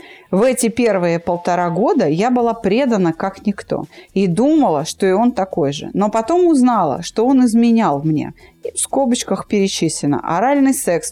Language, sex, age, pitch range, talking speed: Russian, female, 30-49, 180-245 Hz, 165 wpm